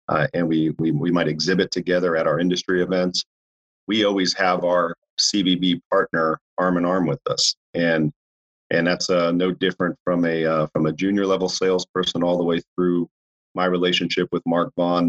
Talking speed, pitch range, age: 185 wpm, 80-90 Hz, 40-59